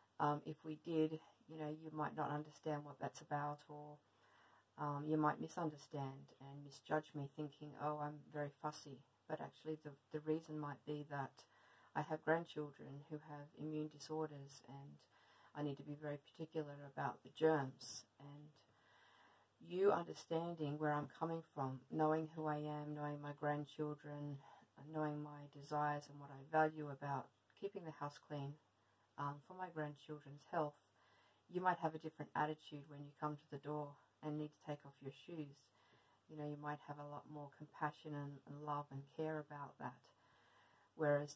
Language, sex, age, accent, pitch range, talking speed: English, female, 40-59, Australian, 145-155 Hz, 170 wpm